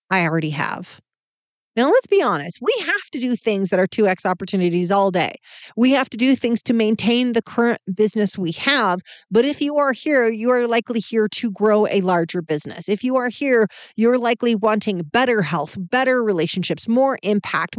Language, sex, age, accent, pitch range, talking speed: English, female, 40-59, American, 185-245 Hz, 190 wpm